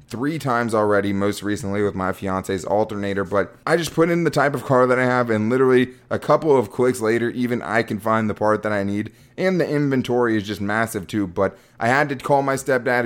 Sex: male